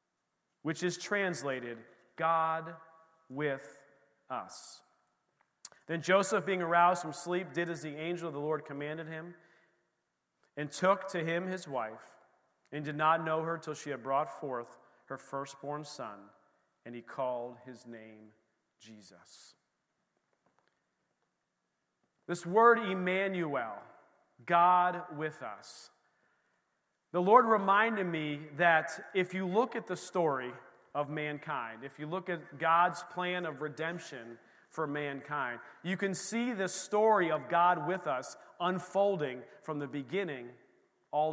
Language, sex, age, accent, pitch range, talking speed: English, male, 40-59, American, 140-185 Hz, 130 wpm